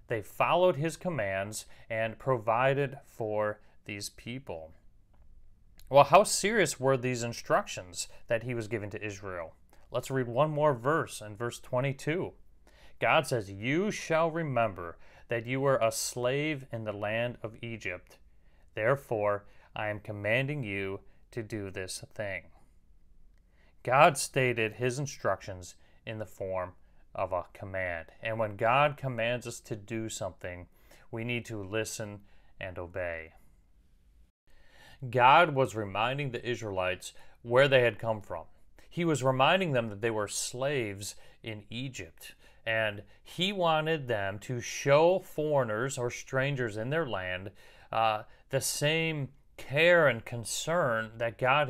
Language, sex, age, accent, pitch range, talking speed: English, male, 30-49, American, 100-135 Hz, 135 wpm